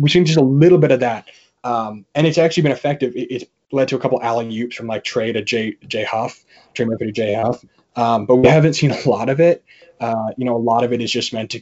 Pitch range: 115-130 Hz